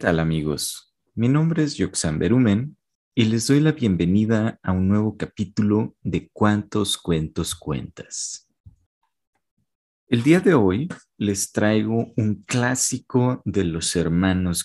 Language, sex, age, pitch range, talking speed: Spanish, male, 40-59, 95-135 Hz, 130 wpm